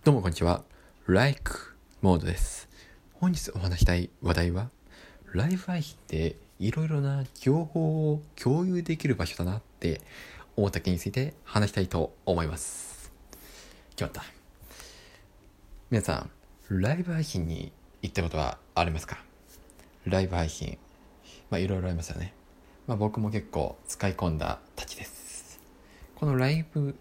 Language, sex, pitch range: Japanese, male, 85-140 Hz